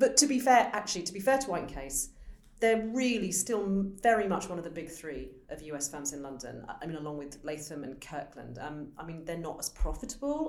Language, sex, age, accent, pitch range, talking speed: English, female, 40-59, British, 155-205 Hz, 230 wpm